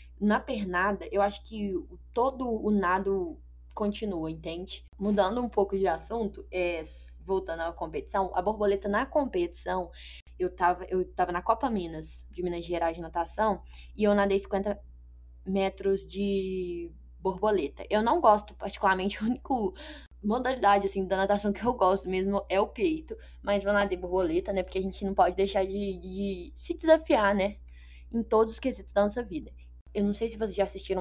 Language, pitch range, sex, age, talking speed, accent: Portuguese, 175-215 Hz, female, 10-29, 170 wpm, Brazilian